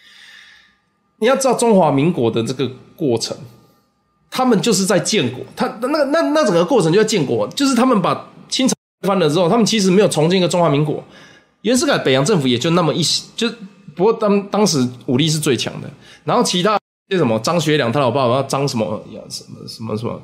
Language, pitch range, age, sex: Chinese, 135-230 Hz, 20-39, male